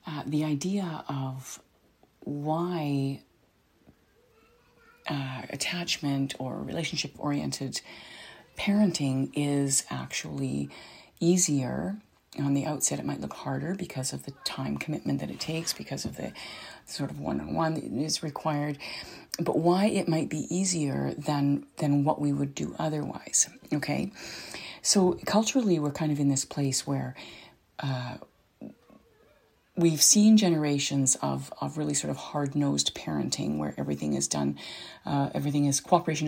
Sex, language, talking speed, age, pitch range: female, English, 130 wpm, 40-59, 130-155 Hz